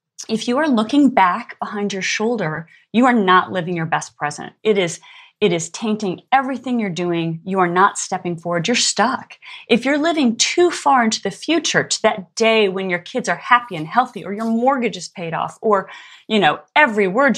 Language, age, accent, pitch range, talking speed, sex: English, 30-49, American, 180-250 Hz, 200 wpm, female